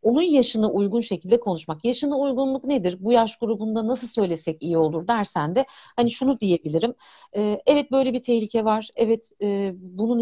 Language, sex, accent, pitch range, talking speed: Turkish, female, native, 205-245 Hz, 160 wpm